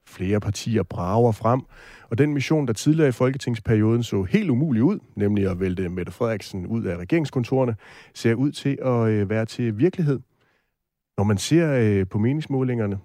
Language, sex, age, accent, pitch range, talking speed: Danish, male, 30-49, native, 100-135 Hz, 160 wpm